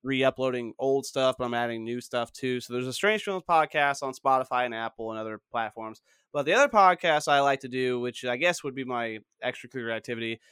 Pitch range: 120-150 Hz